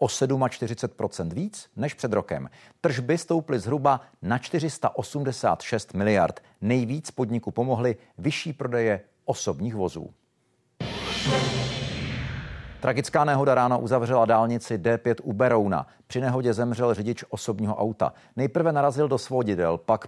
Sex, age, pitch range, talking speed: male, 50-69, 115-140 Hz, 115 wpm